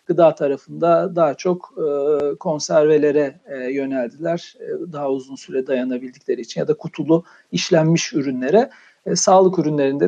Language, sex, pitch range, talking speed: Turkish, male, 160-200 Hz, 105 wpm